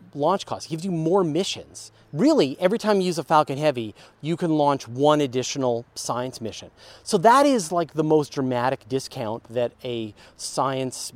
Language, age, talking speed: English, 40-59, 170 wpm